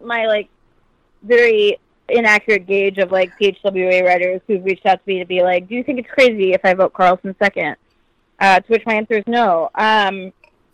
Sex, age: female, 20-39